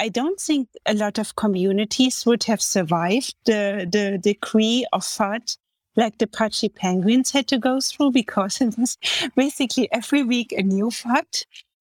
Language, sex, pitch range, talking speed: English, female, 210-250 Hz, 165 wpm